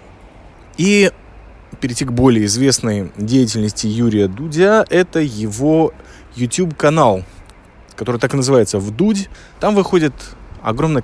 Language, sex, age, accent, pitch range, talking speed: Russian, male, 20-39, native, 110-145 Hz, 105 wpm